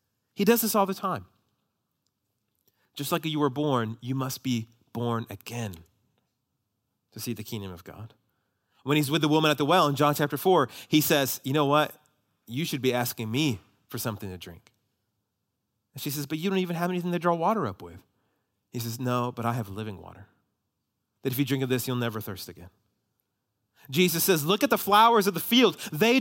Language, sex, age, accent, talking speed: English, male, 30-49, American, 205 wpm